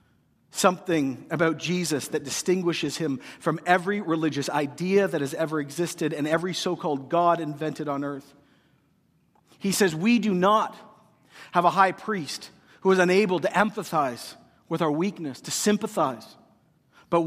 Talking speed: 145 wpm